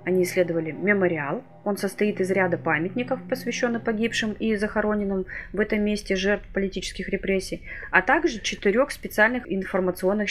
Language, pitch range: Russian, 175-220 Hz